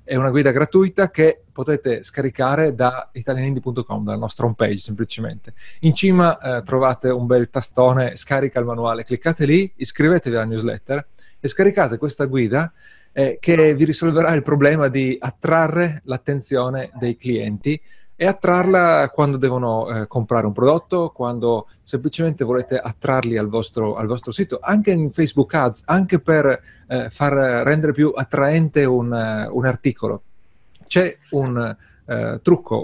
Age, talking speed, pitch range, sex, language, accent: 30-49, 140 wpm, 115-150 Hz, male, Italian, native